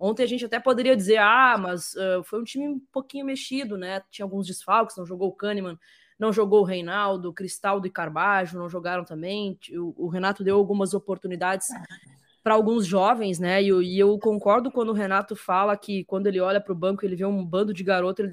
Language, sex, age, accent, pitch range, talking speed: Portuguese, female, 20-39, Brazilian, 185-215 Hz, 215 wpm